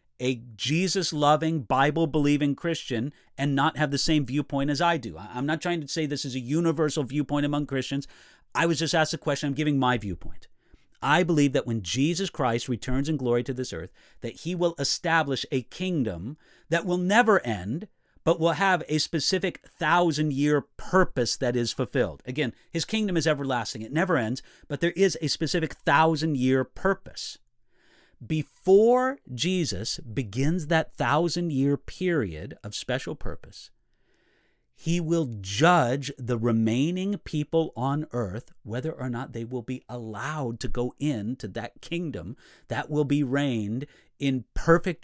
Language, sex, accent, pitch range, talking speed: English, male, American, 125-165 Hz, 155 wpm